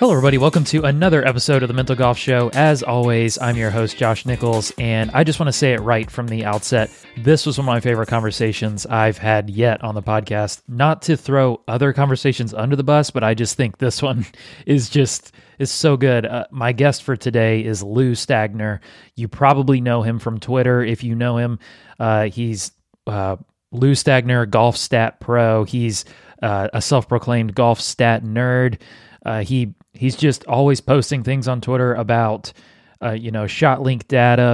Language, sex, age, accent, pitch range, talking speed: English, male, 30-49, American, 110-130 Hz, 190 wpm